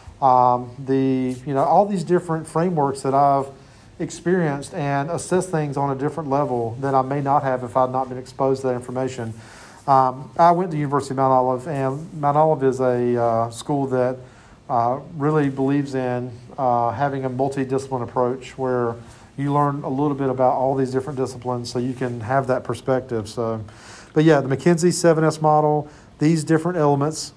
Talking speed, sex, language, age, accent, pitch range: 185 wpm, male, English, 40-59, American, 130-155 Hz